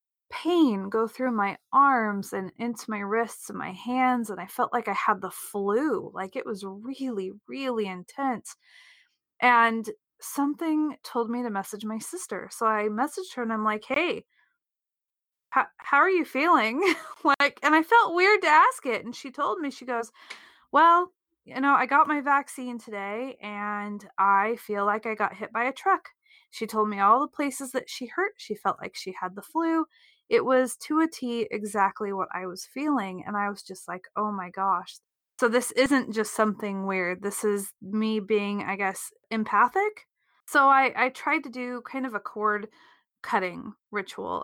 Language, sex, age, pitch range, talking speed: English, female, 20-39, 205-280 Hz, 185 wpm